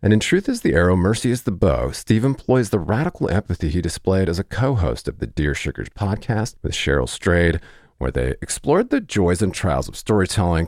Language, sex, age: English, male, 40-59